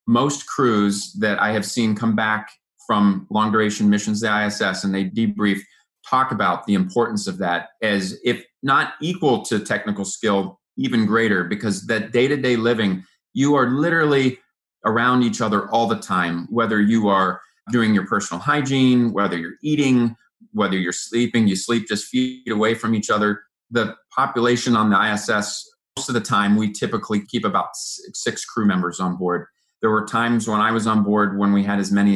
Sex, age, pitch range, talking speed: male, 30-49, 100-130 Hz, 180 wpm